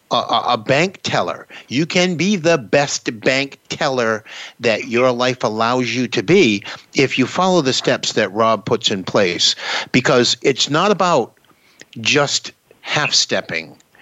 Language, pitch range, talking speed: English, 120-165 Hz, 150 wpm